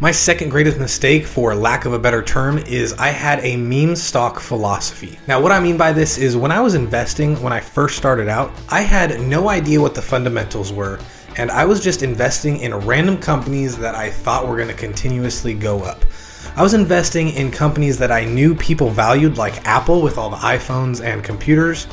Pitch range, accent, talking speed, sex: 120-155 Hz, American, 210 wpm, male